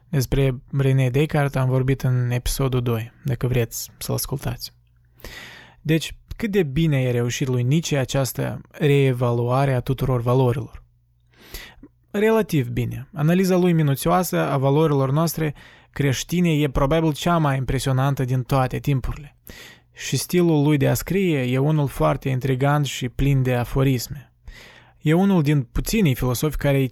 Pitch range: 125-155 Hz